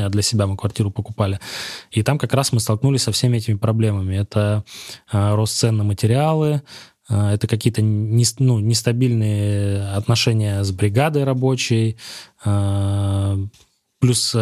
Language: Russian